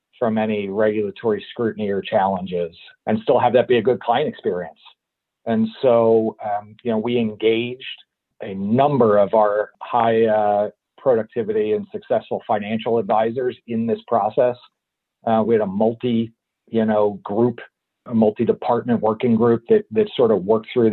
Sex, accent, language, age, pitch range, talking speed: male, American, English, 40-59, 110-125 Hz, 155 wpm